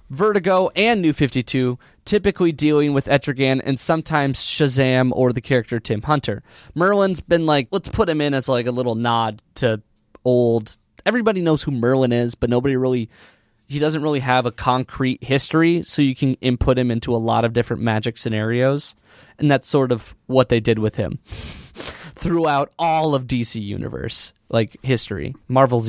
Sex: male